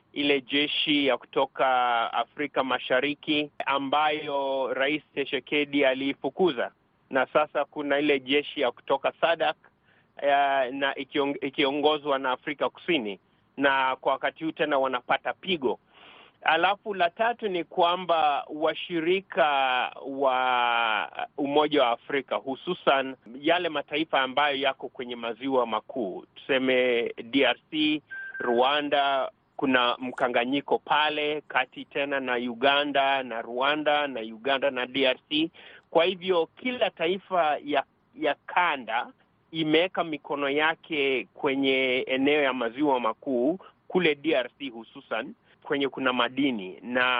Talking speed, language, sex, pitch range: 110 wpm, Swahili, male, 130-155 Hz